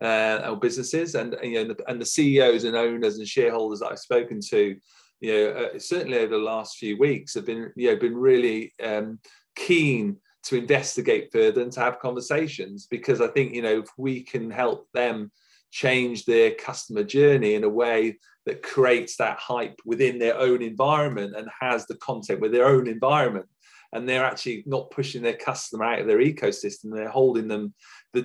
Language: English